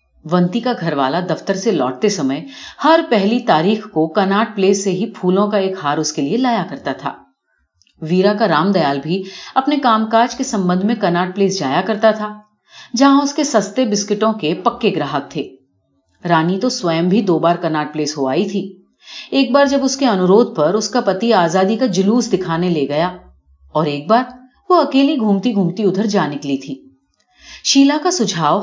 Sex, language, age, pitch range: female, Urdu, 40-59, 160-235 Hz